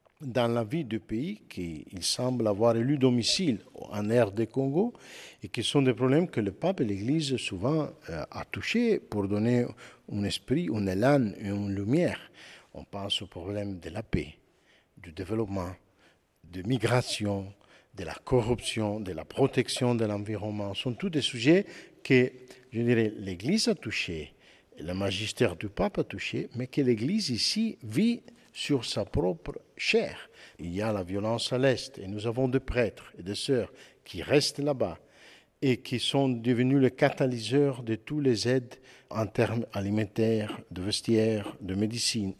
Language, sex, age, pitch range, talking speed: French, male, 50-69, 105-135 Hz, 165 wpm